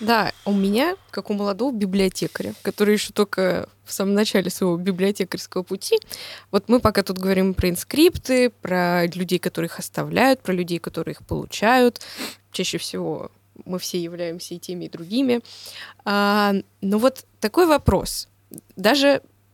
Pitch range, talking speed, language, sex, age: 180-230 Hz, 145 wpm, Russian, female, 20-39